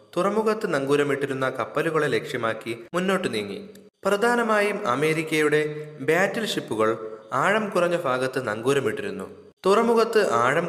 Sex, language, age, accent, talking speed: male, Malayalam, 20-39, native, 90 wpm